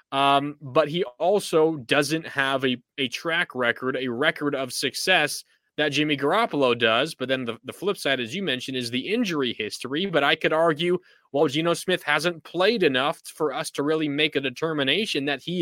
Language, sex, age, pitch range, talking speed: English, male, 20-39, 130-155 Hz, 195 wpm